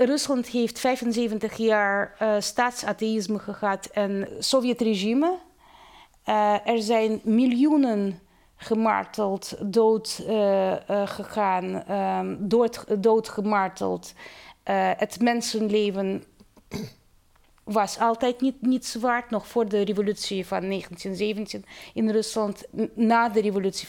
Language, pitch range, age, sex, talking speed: Dutch, 190-225 Hz, 30-49, female, 100 wpm